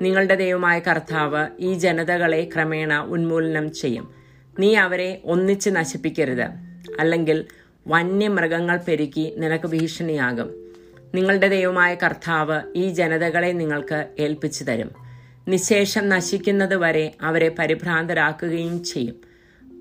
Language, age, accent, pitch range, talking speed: English, 30-49, Indian, 150-180 Hz, 110 wpm